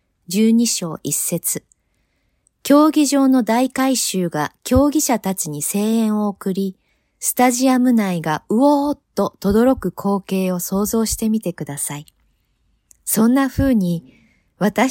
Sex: female